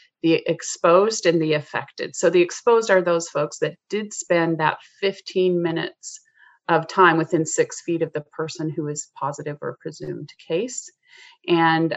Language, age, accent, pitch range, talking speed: English, 40-59, American, 160-190 Hz, 160 wpm